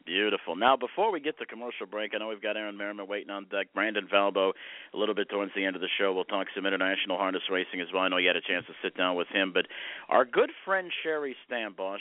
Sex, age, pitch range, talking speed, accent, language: male, 50-69, 100-120 Hz, 265 wpm, American, English